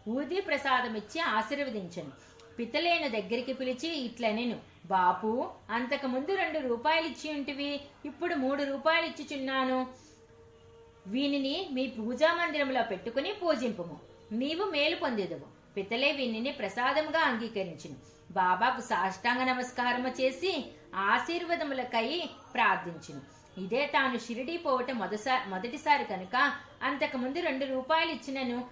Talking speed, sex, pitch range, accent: 85 wpm, female, 220-290 Hz, native